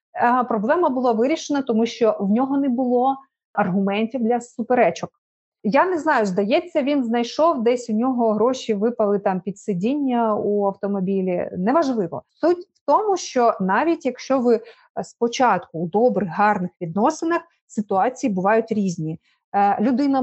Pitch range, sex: 205-270 Hz, female